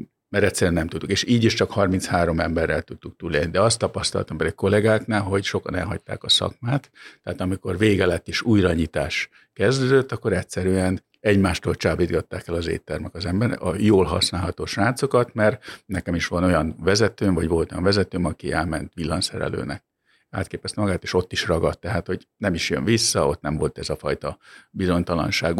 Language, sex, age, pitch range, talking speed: Hungarian, male, 50-69, 85-105 Hz, 175 wpm